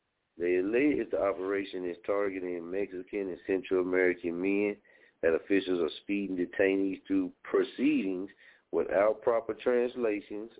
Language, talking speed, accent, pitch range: English, 120 wpm, American, 90-115 Hz